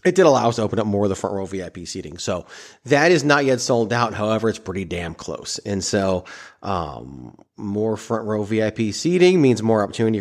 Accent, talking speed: American, 220 wpm